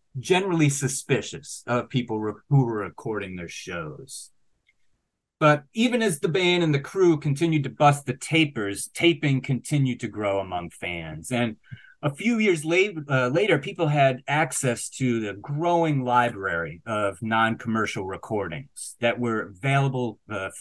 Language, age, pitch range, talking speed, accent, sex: English, 30-49, 115-150 Hz, 135 wpm, American, male